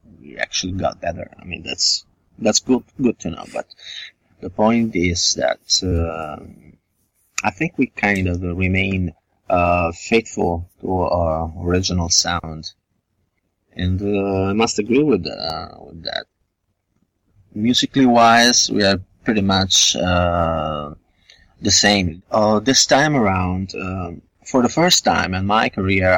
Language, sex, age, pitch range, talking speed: English, male, 30-49, 90-110 Hz, 140 wpm